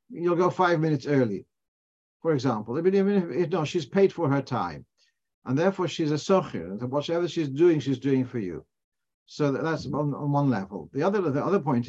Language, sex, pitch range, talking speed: English, male, 125-165 Hz, 205 wpm